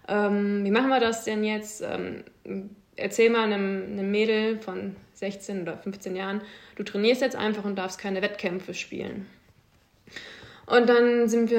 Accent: German